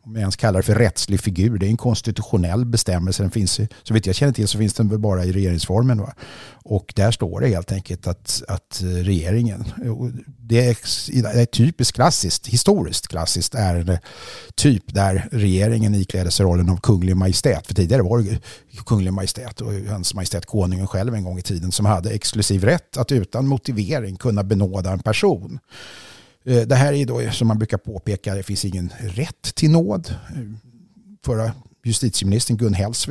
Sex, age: male, 50-69